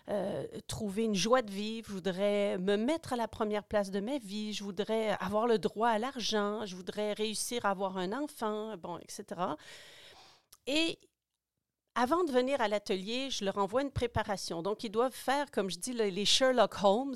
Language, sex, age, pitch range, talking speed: French, female, 40-59, 190-235 Hz, 190 wpm